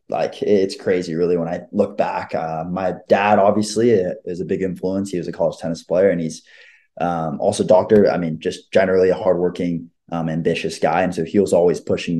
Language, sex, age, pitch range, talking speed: English, male, 20-39, 85-110 Hz, 205 wpm